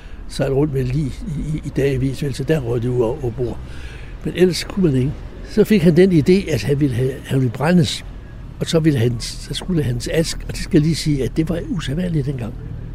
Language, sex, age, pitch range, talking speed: Danish, male, 60-79, 115-150 Hz, 250 wpm